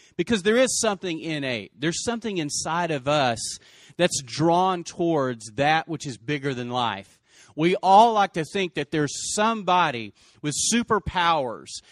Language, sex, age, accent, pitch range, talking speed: English, male, 40-59, American, 125-180 Hz, 145 wpm